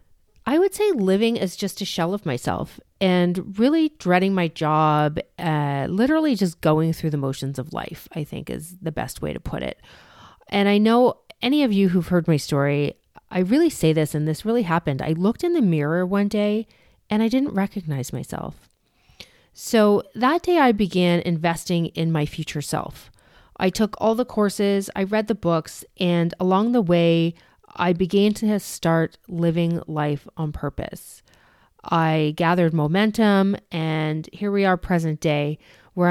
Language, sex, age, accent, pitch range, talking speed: English, female, 30-49, American, 160-205 Hz, 175 wpm